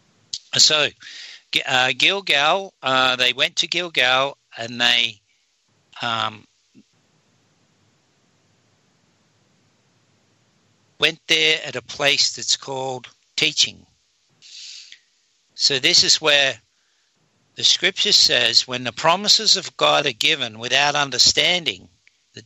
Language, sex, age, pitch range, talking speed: English, male, 60-79, 120-155 Hz, 95 wpm